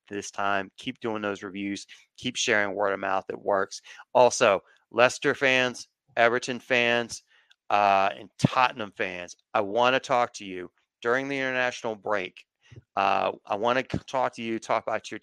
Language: English